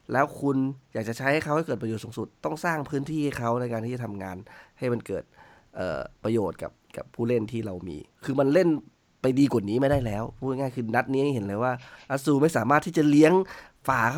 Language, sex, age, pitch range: Thai, male, 20-39, 115-155 Hz